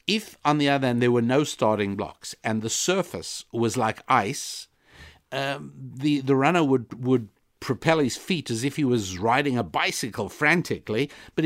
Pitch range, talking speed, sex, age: 120-155 Hz, 180 wpm, male, 60-79